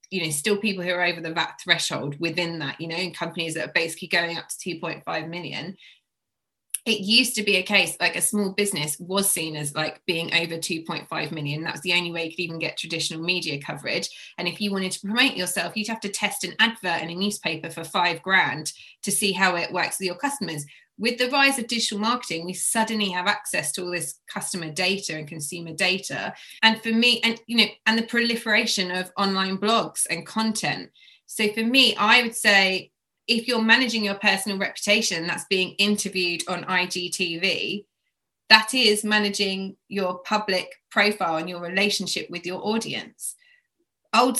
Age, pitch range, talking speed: 20-39, 170-210 Hz, 195 wpm